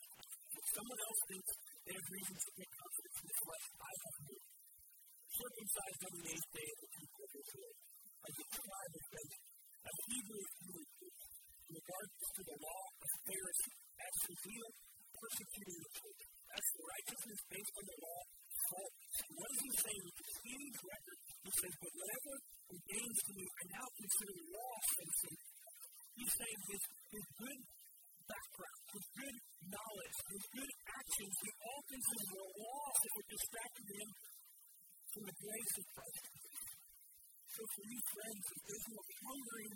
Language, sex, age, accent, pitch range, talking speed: English, female, 40-59, American, 190-255 Hz, 170 wpm